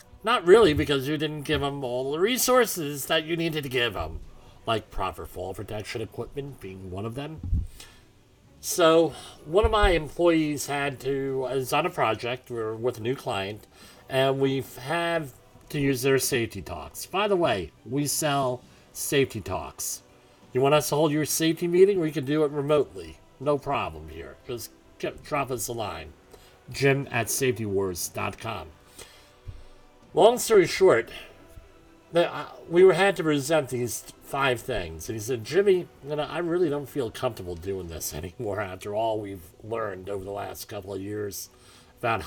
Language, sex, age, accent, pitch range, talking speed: English, male, 40-59, American, 110-150 Hz, 165 wpm